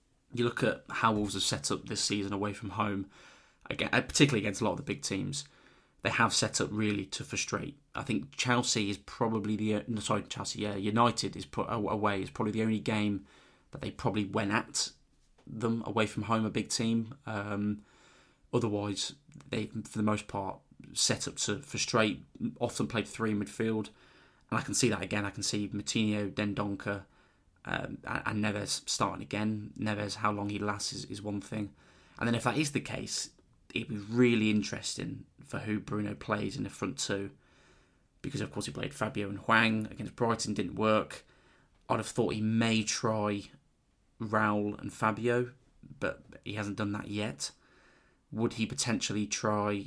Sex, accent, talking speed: male, British, 180 wpm